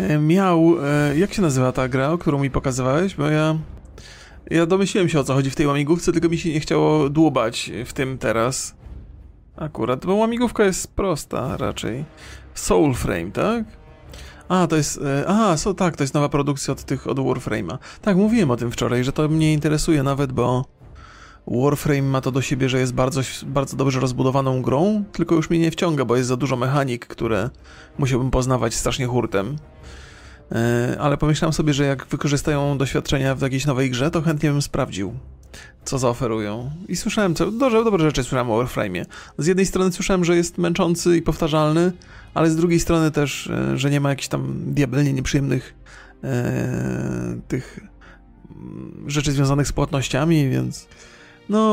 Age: 30-49